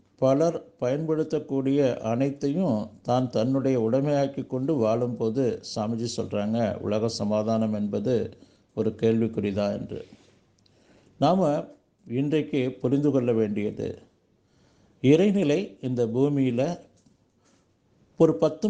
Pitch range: 115-150 Hz